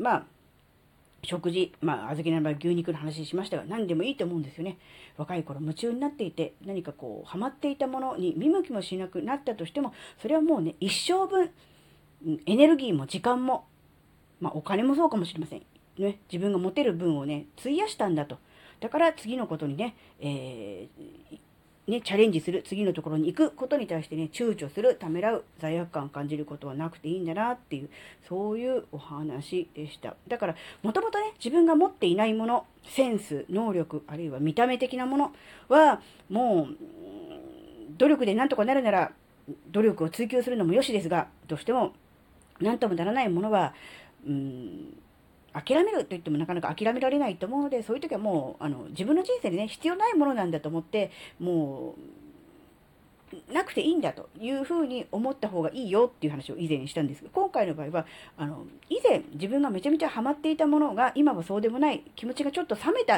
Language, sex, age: Japanese, female, 40-59